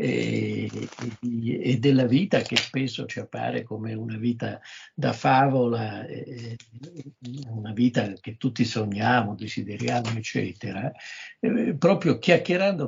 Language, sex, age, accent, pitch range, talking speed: Italian, male, 50-69, native, 120-145 Hz, 100 wpm